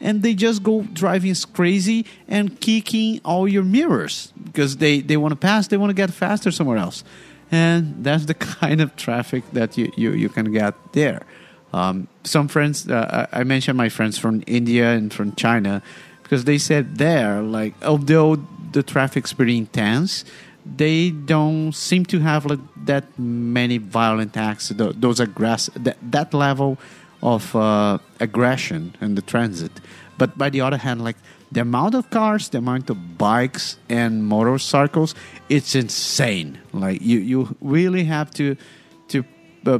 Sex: male